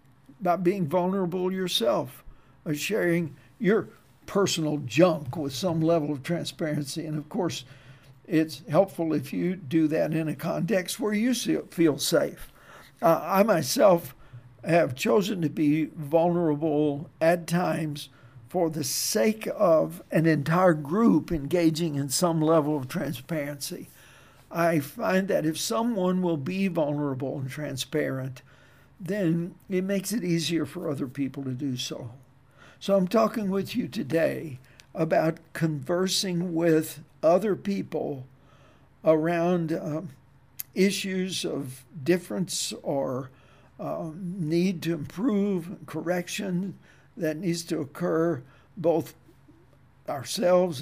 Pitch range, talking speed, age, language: 140-180 Hz, 120 wpm, 60-79, English